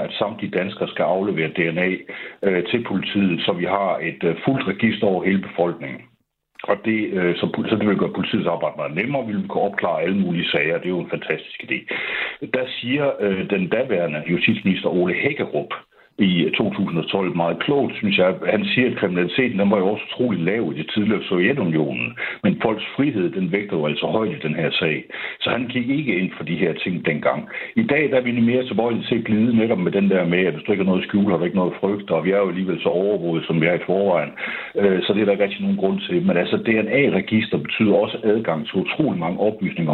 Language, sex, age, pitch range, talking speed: Danish, male, 60-79, 90-115 Hz, 225 wpm